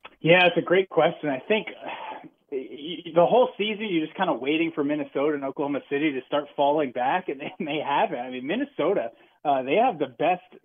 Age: 30-49